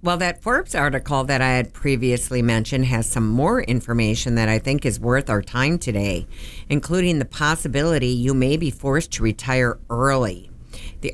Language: English